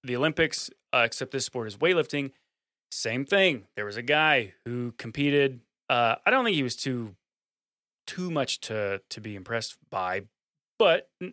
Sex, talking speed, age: male, 165 wpm, 20-39